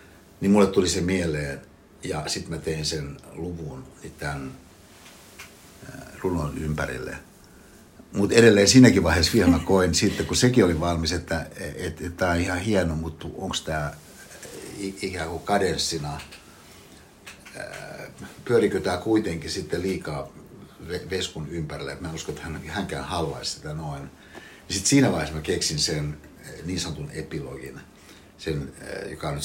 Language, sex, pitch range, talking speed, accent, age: Finnish, male, 75-95 Hz, 130 wpm, native, 60-79